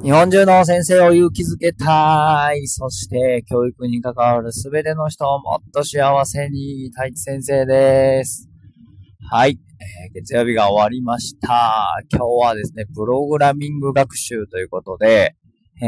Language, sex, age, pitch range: Japanese, male, 20-39, 110-145 Hz